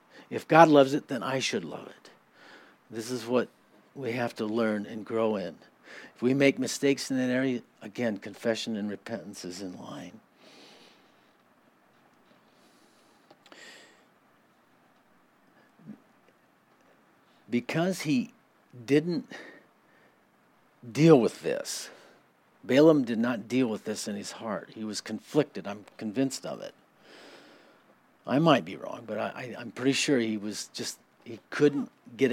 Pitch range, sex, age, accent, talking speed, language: 110-145 Hz, male, 60-79, American, 125 wpm, English